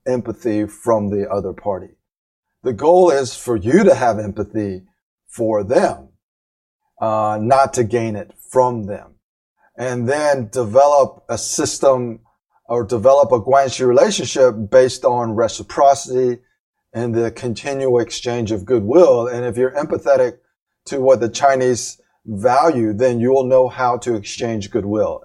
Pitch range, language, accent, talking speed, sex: 110-135 Hz, English, American, 140 wpm, male